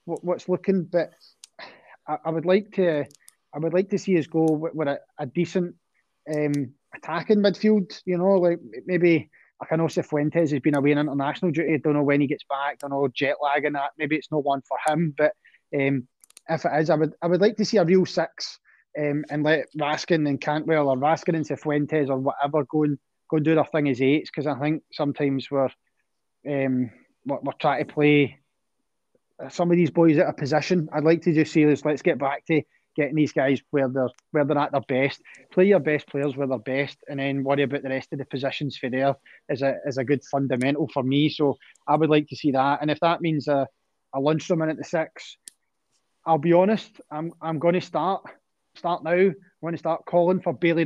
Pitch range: 140-170 Hz